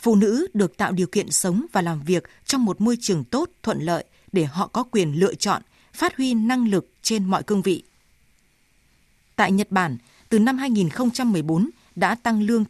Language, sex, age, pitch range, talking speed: Vietnamese, female, 20-39, 180-225 Hz, 190 wpm